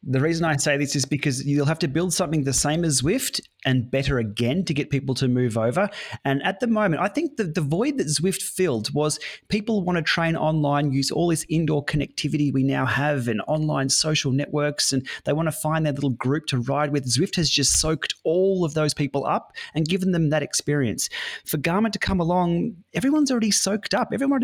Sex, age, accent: male, 30-49, Australian